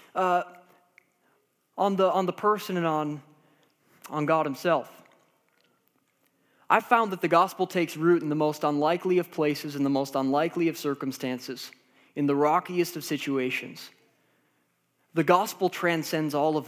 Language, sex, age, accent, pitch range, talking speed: English, male, 20-39, American, 170-225 Hz, 145 wpm